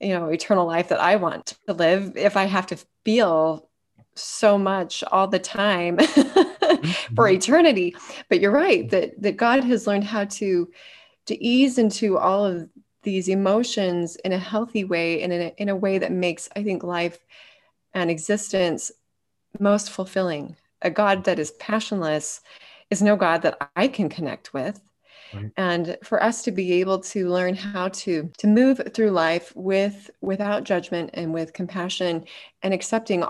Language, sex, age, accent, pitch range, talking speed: English, female, 20-39, American, 170-205 Hz, 165 wpm